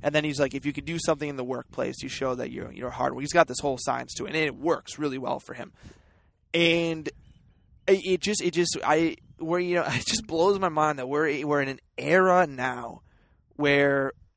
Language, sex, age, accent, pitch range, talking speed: English, male, 20-39, American, 135-170 Hz, 235 wpm